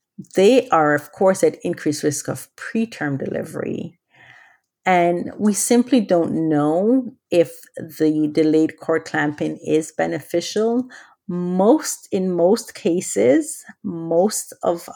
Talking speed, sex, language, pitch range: 110 wpm, female, English, 155-200 Hz